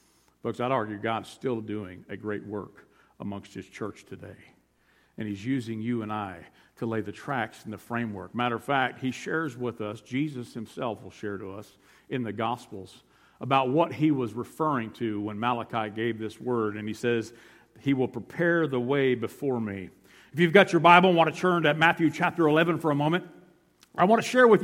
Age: 50-69